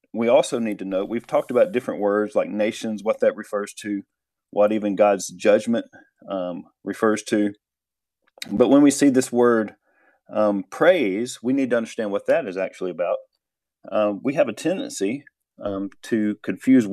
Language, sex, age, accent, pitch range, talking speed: English, male, 40-59, American, 105-130 Hz, 170 wpm